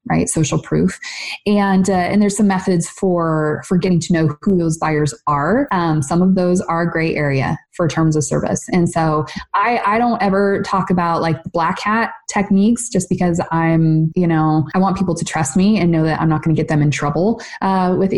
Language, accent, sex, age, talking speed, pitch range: English, American, female, 20-39, 215 wpm, 160-195 Hz